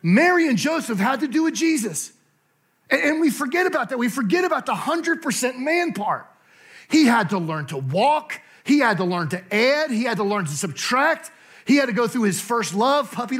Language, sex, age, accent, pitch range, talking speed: English, male, 40-59, American, 205-270 Hz, 210 wpm